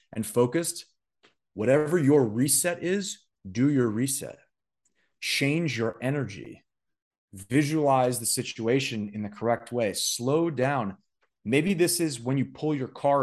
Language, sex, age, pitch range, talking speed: English, male, 30-49, 105-135 Hz, 130 wpm